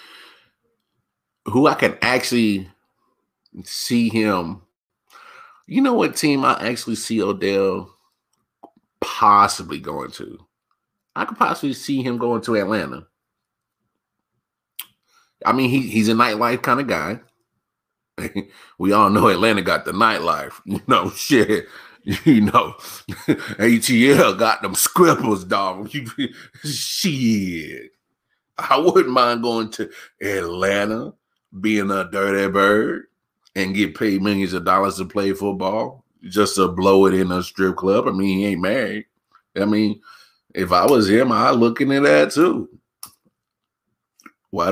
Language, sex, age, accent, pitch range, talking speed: English, male, 30-49, American, 100-130 Hz, 130 wpm